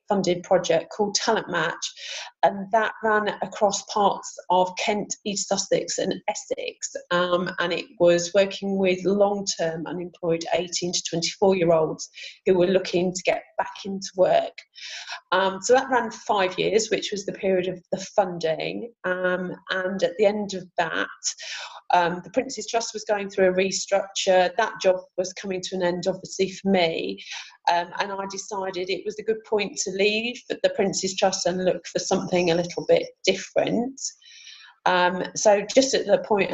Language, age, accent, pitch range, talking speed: English, 30-49, British, 175-215 Hz, 170 wpm